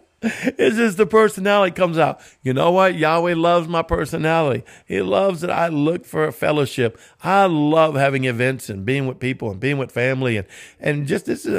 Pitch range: 120-150 Hz